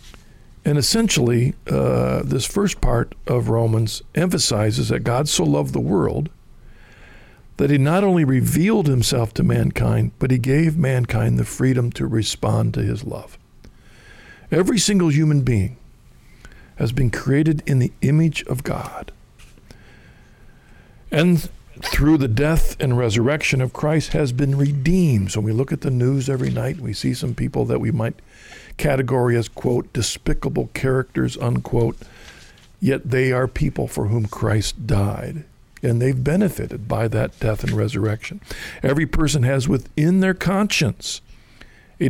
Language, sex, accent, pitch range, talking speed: English, male, American, 115-155 Hz, 145 wpm